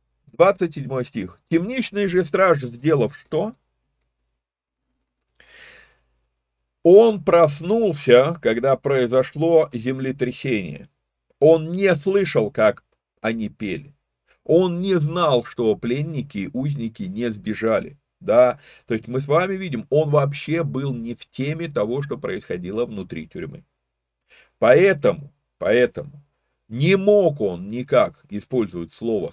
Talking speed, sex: 105 wpm, male